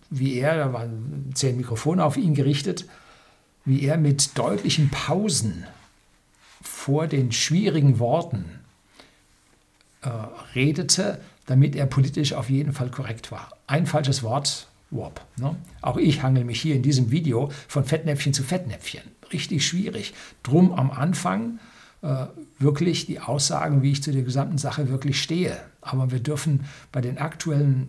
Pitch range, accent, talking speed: 130-155 Hz, German, 145 wpm